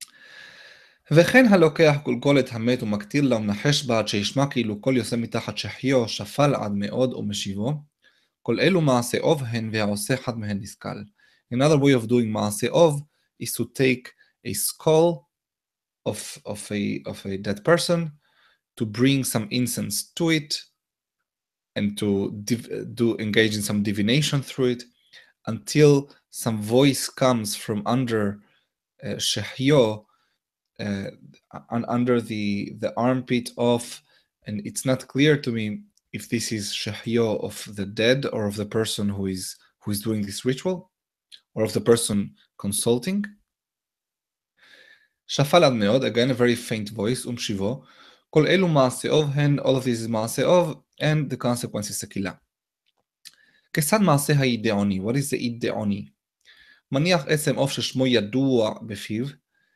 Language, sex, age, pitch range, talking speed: English, male, 20-39, 105-140 Hz, 115 wpm